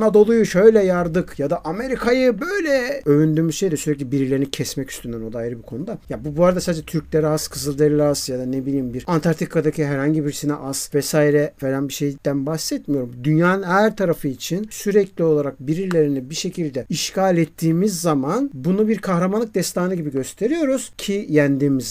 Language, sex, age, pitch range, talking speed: Turkish, male, 50-69, 140-200 Hz, 165 wpm